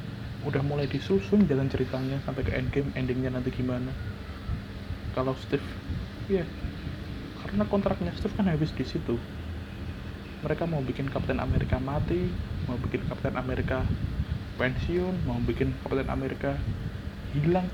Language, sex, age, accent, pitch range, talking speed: Indonesian, male, 20-39, native, 95-145 Hz, 130 wpm